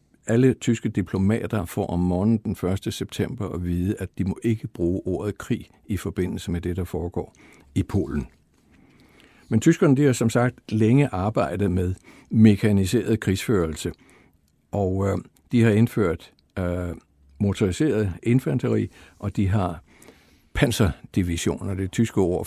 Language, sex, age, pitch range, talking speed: Danish, male, 60-79, 90-115 Hz, 140 wpm